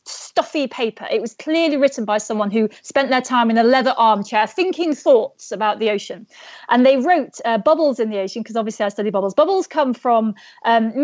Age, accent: 30-49, British